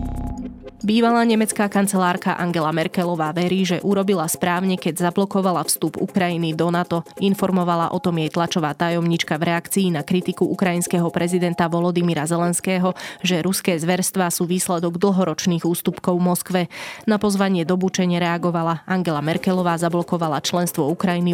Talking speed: 130 wpm